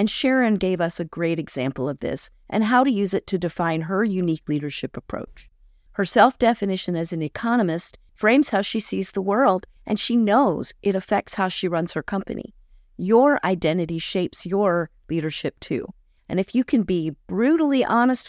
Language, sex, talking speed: English, female, 175 wpm